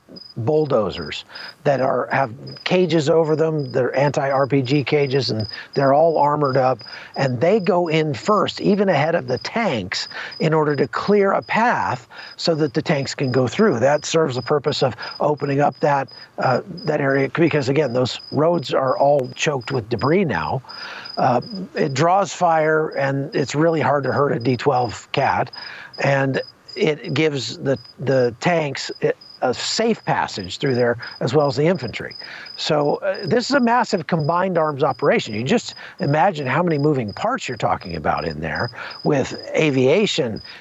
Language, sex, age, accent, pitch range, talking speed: English, male, 50-69, American, 135-170 Hz, 165 wpm